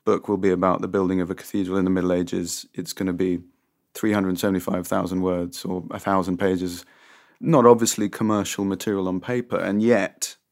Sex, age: male, 30-49